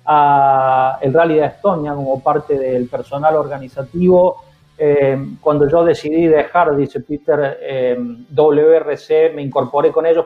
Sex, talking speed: male, 130 wpm